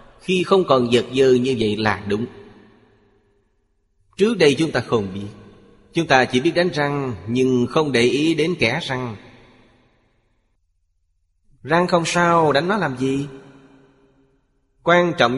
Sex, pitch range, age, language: male, 105-145 Hz, 30-49, Vietnamese